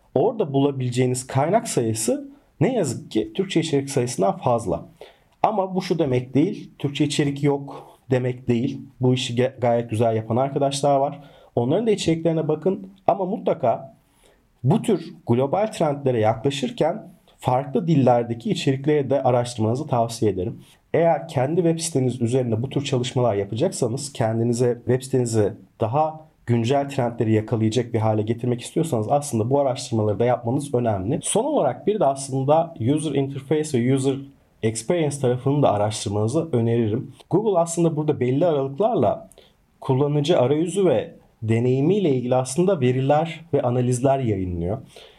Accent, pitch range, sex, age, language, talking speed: native, 120-150 Hz, male, 40-59, Turkish, 135 wpm